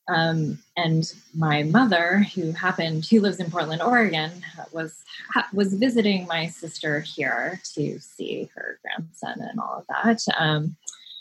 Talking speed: 140 wpm